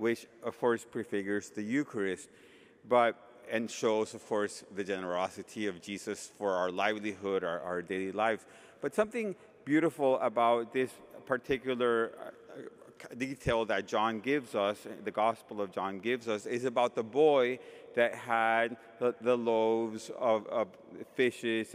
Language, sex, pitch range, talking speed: English, male, 115-150 Hz, 140 wpm